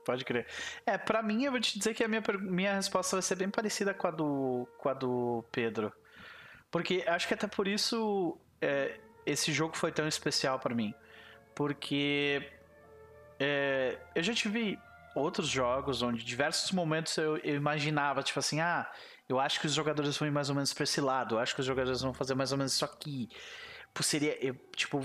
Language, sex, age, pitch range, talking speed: Portuguese, male, 30-49, 145-205 Hz, 185 wpm